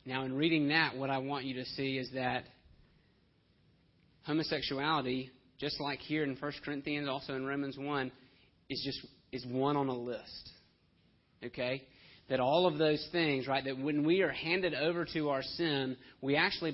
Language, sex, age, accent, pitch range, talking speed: English, male, 30-49, American, 130-155 Hz, 170 wpm